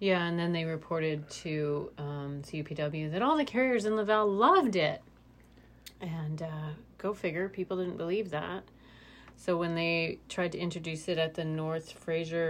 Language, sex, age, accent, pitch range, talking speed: English, female, 30-49, American, 160-195 Hz, 170 wpm